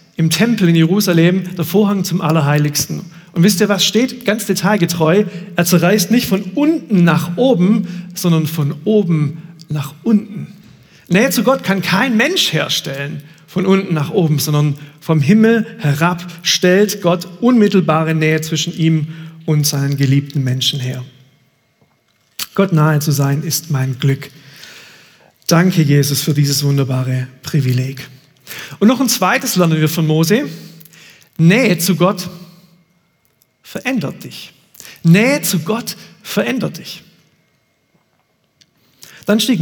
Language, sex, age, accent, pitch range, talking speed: German, male, 40-59, German, 150-190 Hz, 130 wpm